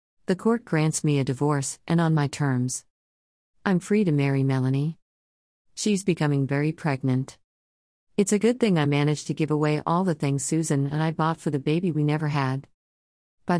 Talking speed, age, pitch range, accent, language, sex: 185 wpm, 40-59, 130-170 Hz, American, English, female